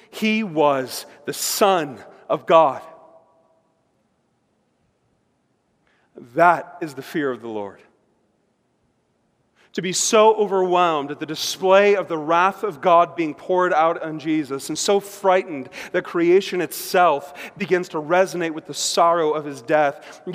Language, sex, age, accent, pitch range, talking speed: English, male, 40-59, American, 155-195 Hz, 135 wpm